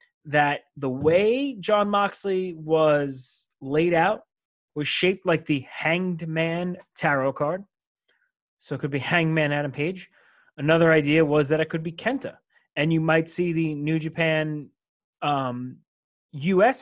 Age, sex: 30-49, male